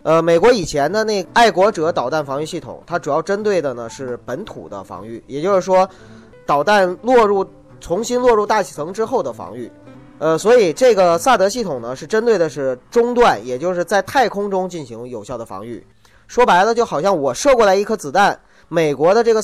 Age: 20-39